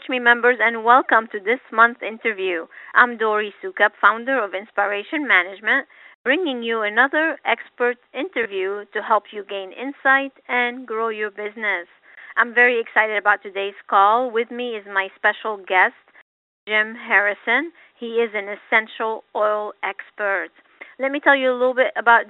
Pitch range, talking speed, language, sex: 205-250 Hz, 155 wpm, English, female